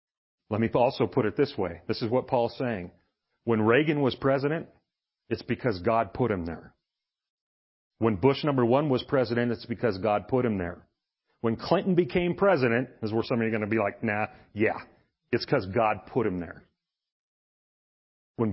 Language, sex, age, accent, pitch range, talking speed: English, male, 40-59, American, 115-145 Hz, 180 wpm